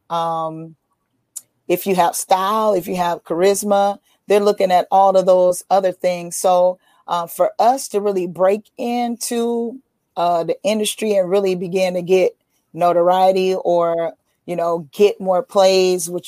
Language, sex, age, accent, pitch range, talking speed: English, female, 40-59, American, 170-200 Hz, 150 wpm